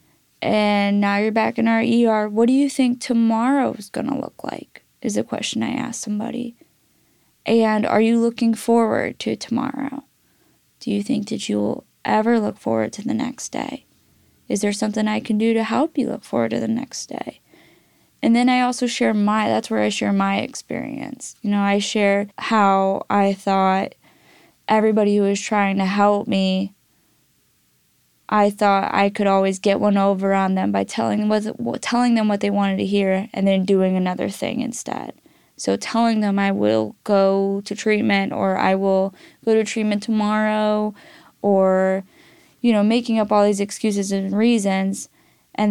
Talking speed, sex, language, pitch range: 175 wpm, female, English, 195-230 Hz